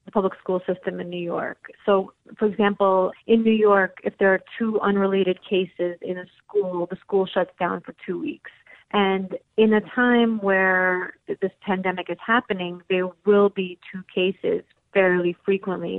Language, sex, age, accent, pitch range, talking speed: English, female, 30-49, American, 185-210 Hz, 170 wpm